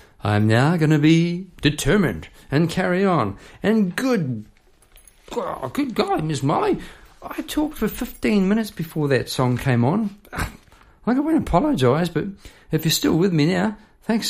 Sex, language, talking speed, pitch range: male, English, 155 wpm, 105-165 Hz